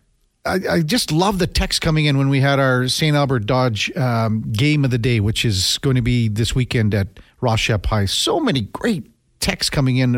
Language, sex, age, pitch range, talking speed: English, male, 50-69, 115-145 Hz, 210 wpm